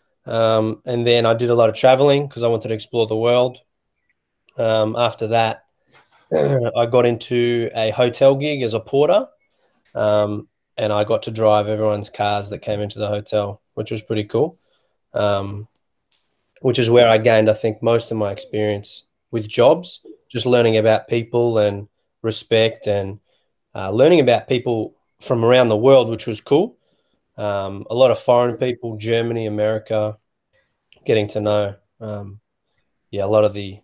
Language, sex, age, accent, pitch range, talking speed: English, male, 20-39, Australian, 105-125 Hz, 165 wpm